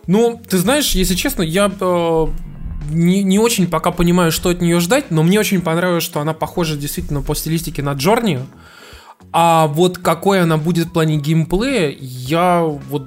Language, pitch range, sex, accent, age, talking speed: Russian, 135-175 Hz, male, native, 20-39, 175 wpm